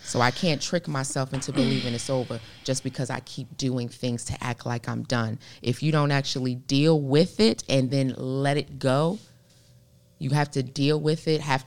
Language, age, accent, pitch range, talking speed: English, 20-39, American, 115-130 Hz, 200 wpm